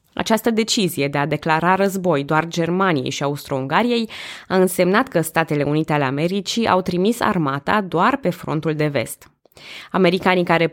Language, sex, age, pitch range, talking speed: Romanian, female, 20-39, 150-190 Hz, 150 wpm